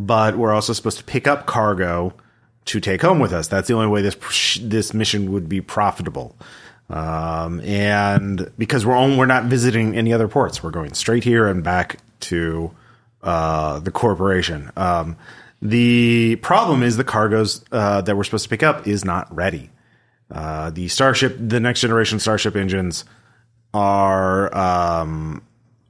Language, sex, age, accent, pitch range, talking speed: English, male, 30-49, American, 95-120 Hz, 160 wpm